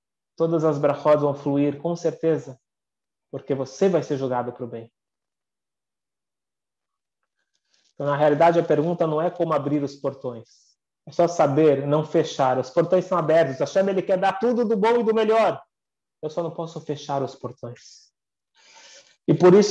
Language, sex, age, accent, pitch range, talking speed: Portuguese, male, 20-39, Brazilian, 140-170 Hz, 160 wpm